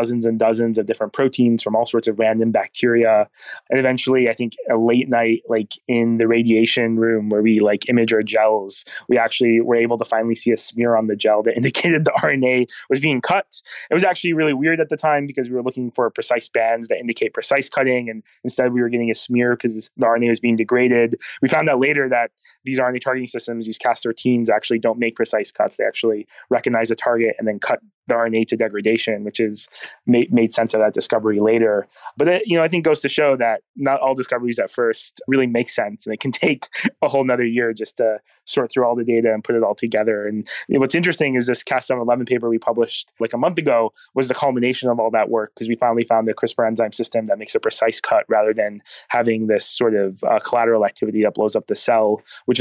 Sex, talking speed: male, 235 wpm